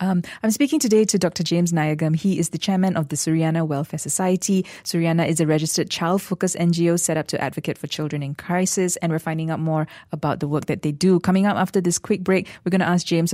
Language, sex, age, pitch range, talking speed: English, female, 20-39, 160-195 Hz, 240 wpm